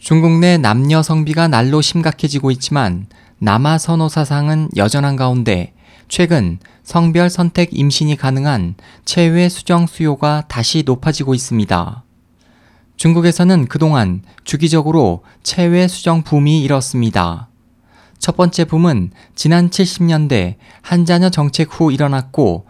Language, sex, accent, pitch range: Korean, male, native, 120-165 Hz